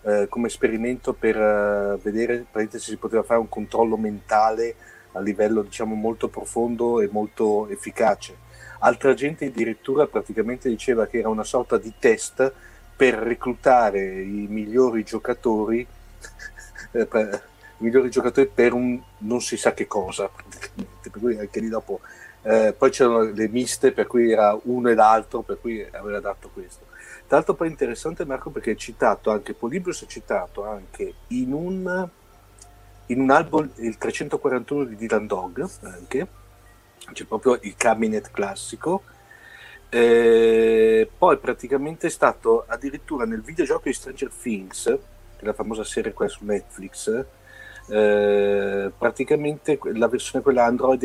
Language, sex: Italian, male